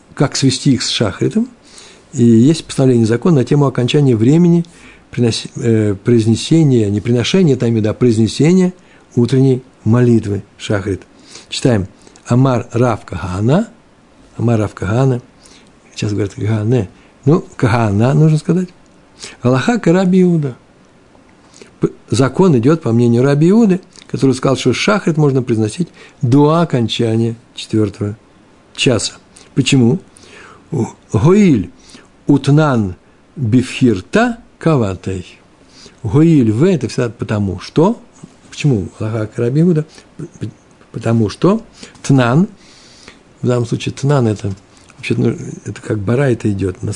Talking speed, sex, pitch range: 105 wpm, male, 110-145 Hz